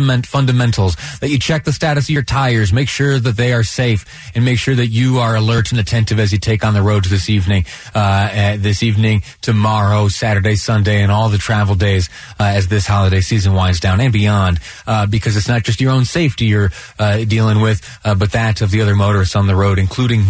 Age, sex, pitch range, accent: 30-49, male, 105-130 Hz, American